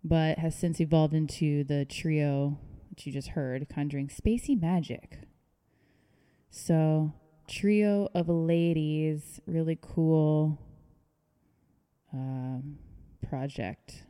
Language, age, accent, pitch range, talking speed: English, 20-39, American, 145-170 Hz, 95 wpm